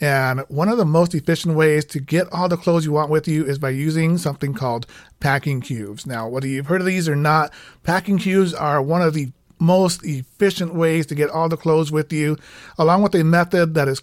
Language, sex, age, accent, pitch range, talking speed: English, male, 40-59, American, 140-170 Hz, 225 wpm